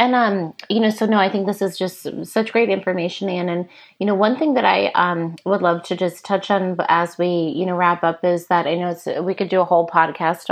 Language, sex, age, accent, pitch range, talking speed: English, female, 30-49, American, 175-200 Hz, 265 wpm